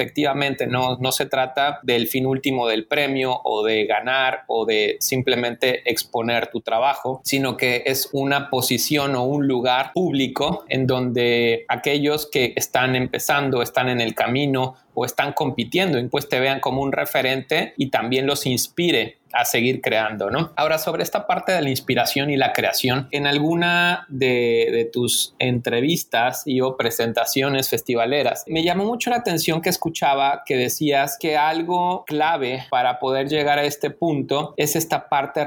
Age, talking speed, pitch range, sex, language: 30-49, 160 wpm, 125-155 Hz, male, Spanish